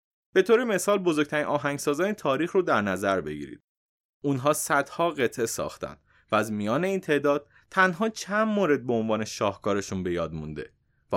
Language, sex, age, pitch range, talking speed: Persian, male, 30-49, 120-170 Hz, 155 wpm